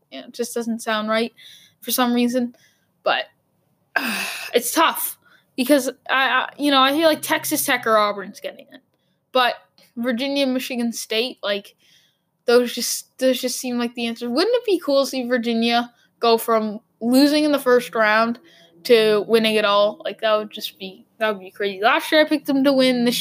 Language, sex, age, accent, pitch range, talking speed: English, female, 10-29, American, 210-260 Hz, 195 wpm